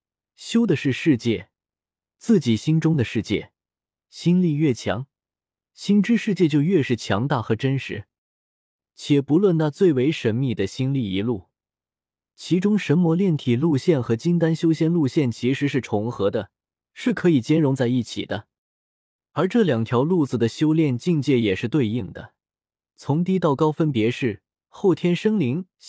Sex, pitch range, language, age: male, 120-170 Hz, Chinese, 20-39